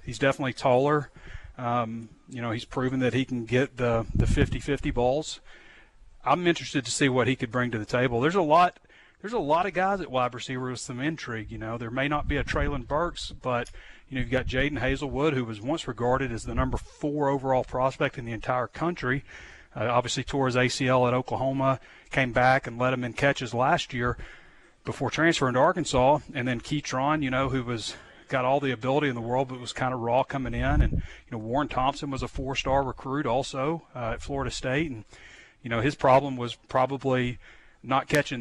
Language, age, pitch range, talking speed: English, 30-49, 120-140 Hz, 210 wpm